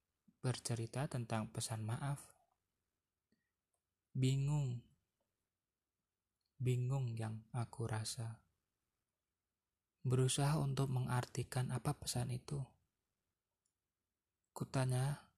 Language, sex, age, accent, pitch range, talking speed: Indonesian, male, 20-39, native, 95-130 Hz, 60 wpm